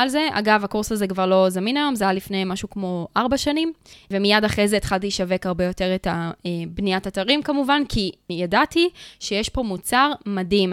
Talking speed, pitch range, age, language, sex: 185 wpm, 195-235 Hz, 20-39, Hebrew, female